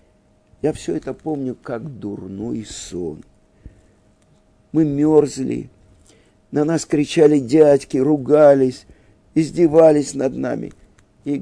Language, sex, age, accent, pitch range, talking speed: Russian, male, 50-69, native, 110-150 Hz, 95 wpm